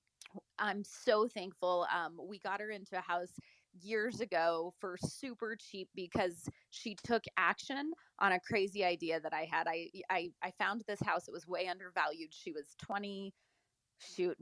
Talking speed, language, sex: 165 wpm, English, female